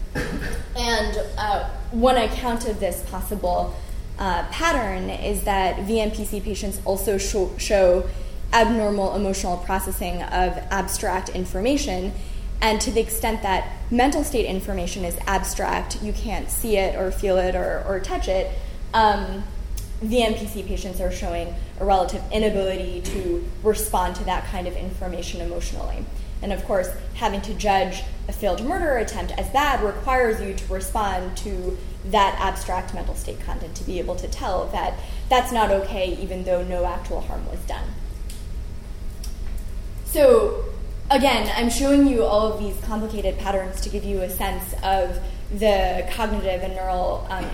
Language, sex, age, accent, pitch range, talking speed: English, female, 10-29, American, 185-220 Hz, 150 wpm